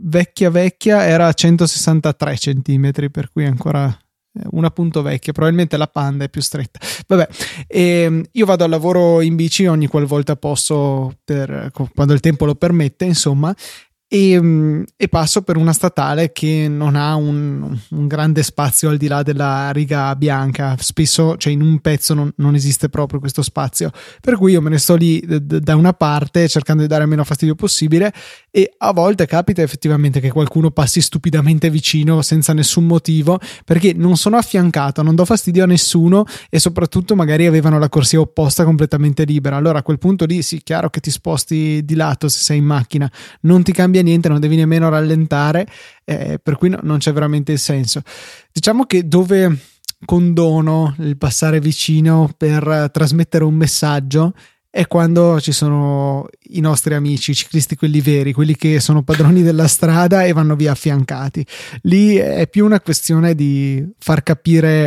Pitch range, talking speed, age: 145-170 Hz, 175 wpm, 20-39